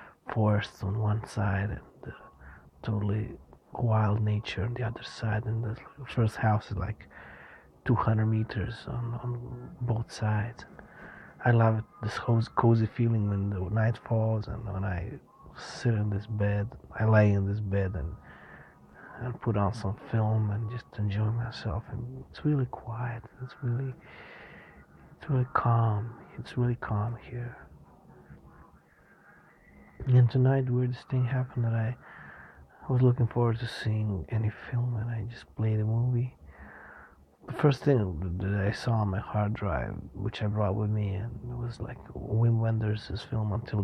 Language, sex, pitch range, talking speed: English, male, 100-120 Hz, 155 wpm